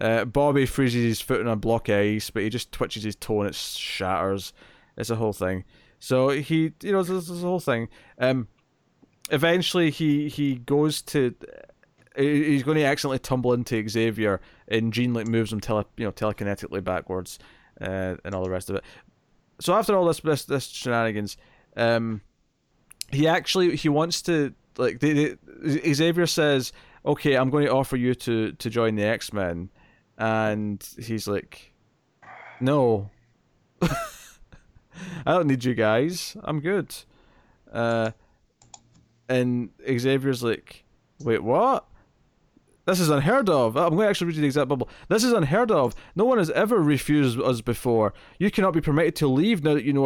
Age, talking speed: 20-39, 170 wpm